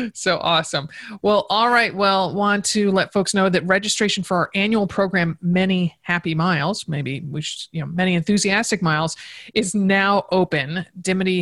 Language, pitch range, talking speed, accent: English, 160-205 Hz, 165 wpm, American